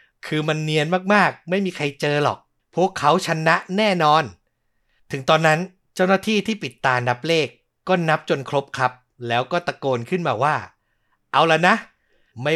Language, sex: Thai, male